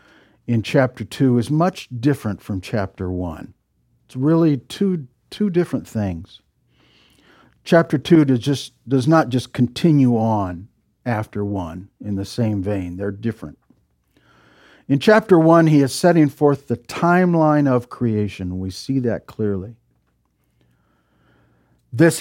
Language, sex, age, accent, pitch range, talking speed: English, male, 60-79, American, 100-145 Hz, 125 wpm